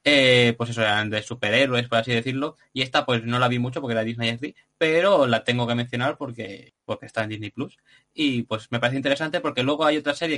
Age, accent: 20-39, Spanish